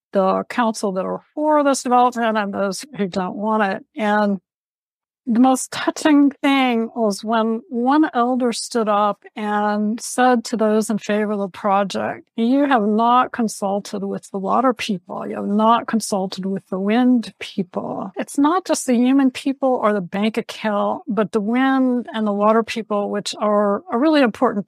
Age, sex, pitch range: 60-79, female, 195-250 Hz